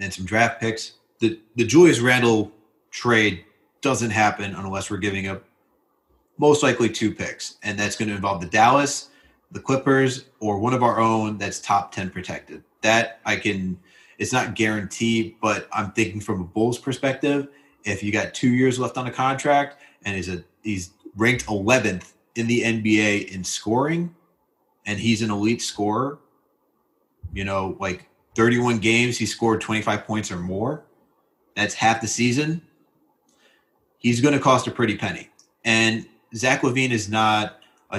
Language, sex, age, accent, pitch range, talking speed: English, male, 30-49, American, 105-125 Hz, 165 wpm